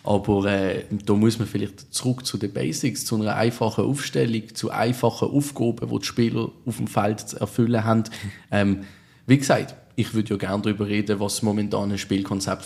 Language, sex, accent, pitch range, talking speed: German, male, Austrian, 105-120 Hz, 185 wpm